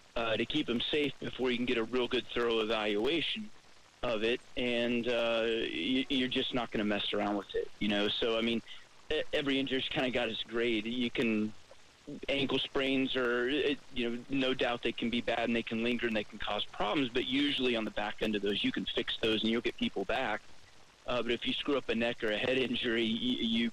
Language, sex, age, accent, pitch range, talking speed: English, male, 40-59, American, 110-125 Hz, 230 wpm